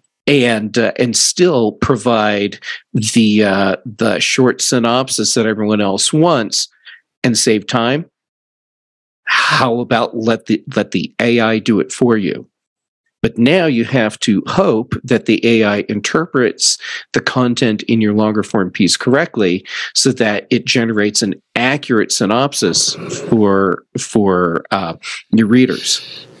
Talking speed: 130 wpm